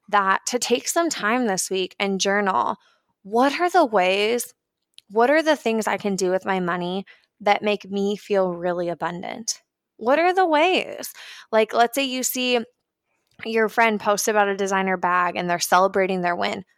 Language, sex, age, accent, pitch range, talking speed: English, female, 20-39, American, 180-230 Hz, 180 wpm